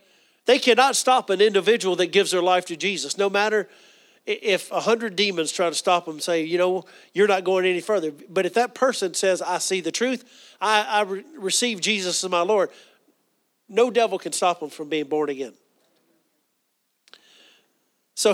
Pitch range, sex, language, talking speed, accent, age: 170-220 Hz, male, English, 185 wpm, American, 40-59